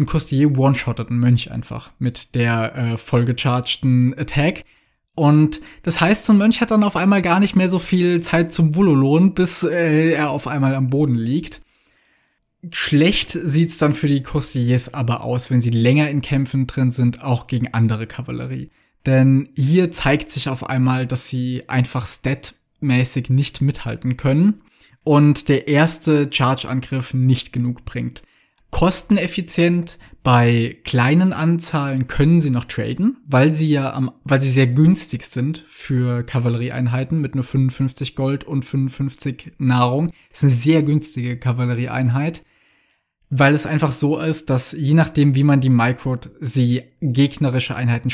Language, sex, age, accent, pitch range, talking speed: German, male, 20-39, German, 125-150 Hz, 155 wpm